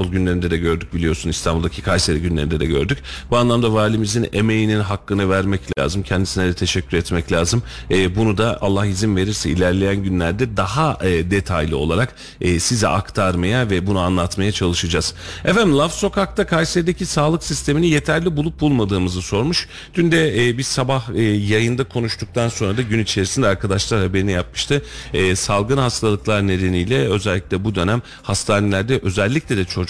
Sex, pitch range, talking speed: male, 90-110 Hz, 140 wpm